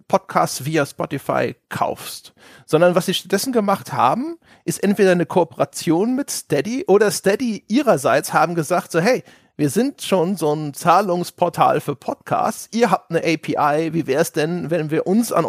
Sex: male